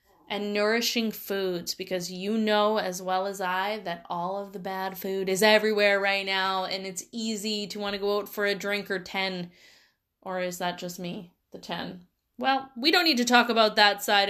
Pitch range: 195-230 Hz